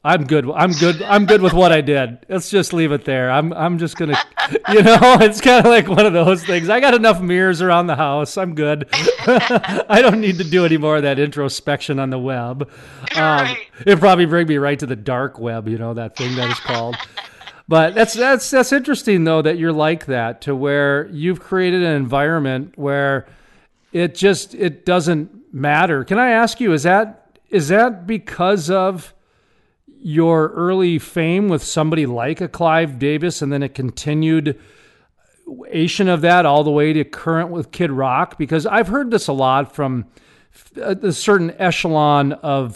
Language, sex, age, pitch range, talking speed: English, male, 40-59, 135-185 Hz, 190 wpm